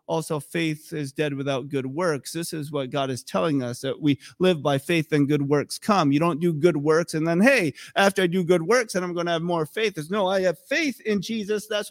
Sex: male